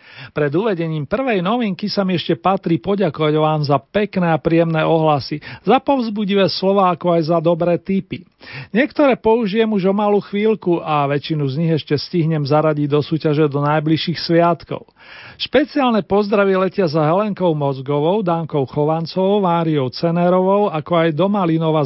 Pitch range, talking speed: 150-185 Hz, 150 wpm